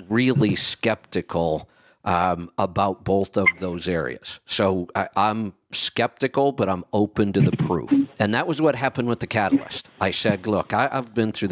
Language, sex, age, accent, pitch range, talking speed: English, male, 50-69, American, 95-115 Hz, 165 wpm